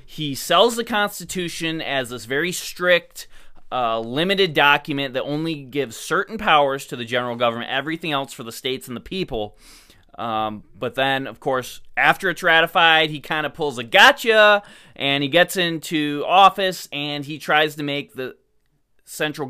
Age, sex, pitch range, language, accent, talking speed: 20-39, male, 130-180 Hz, English, American, 165 wpm